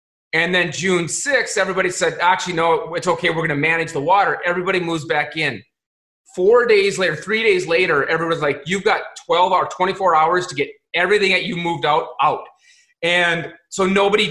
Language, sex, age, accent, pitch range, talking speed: English, male, 30-49, American, 155-185 Hz, 190 wpm